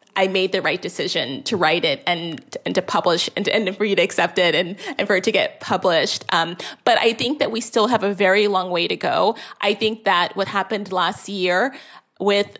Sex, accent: female, American